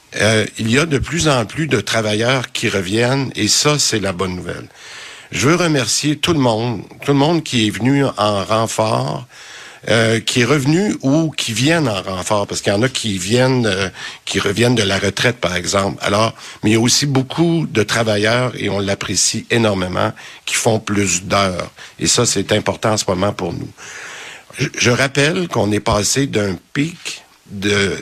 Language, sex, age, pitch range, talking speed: French, male, 60-79, 100-130 Hz, 195 wpm